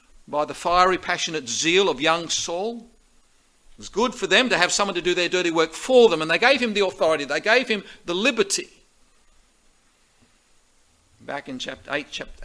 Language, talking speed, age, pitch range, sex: English, 190 wpm, 50-69, 140-185 Hz, male